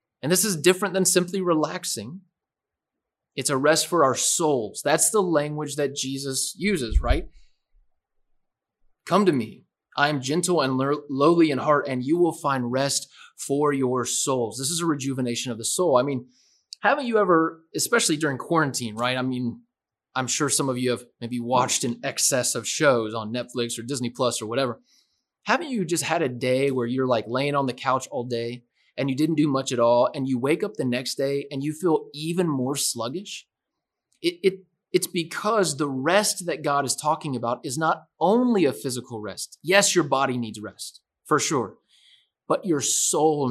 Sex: male